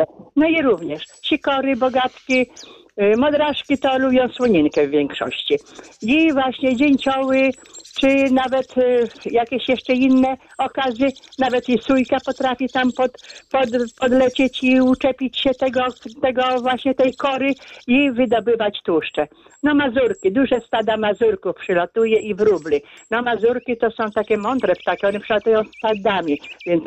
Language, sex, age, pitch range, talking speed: Polish, female, 50-69, 210-265 Hz, 130 wpm